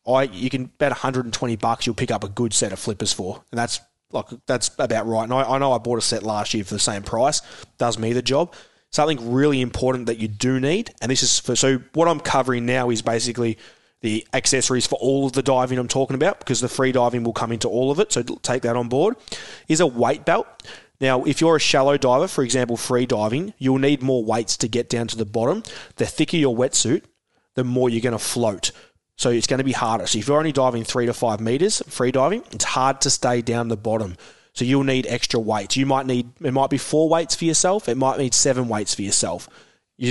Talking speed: 245 wpm